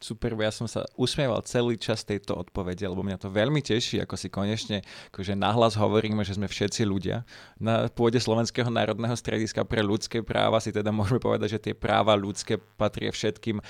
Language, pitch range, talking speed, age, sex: Slovak, 105-125 Hz, 185 wpm, 20-39, male